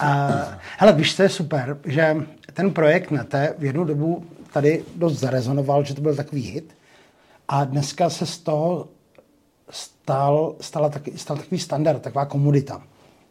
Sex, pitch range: male, 145-165 Hz